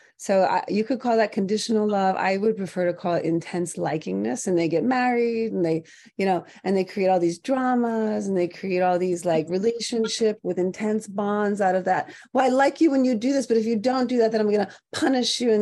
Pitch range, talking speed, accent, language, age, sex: 175-225 Hz, 240 wpm, American, English, 30-49, female